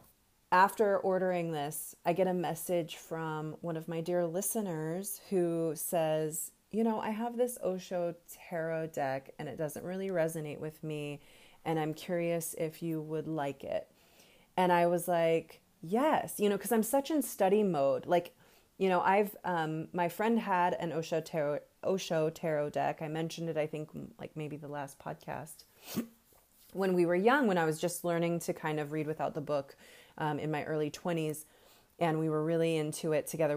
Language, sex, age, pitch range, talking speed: English, female, 30-49, 155-175 Hz, 180 wpm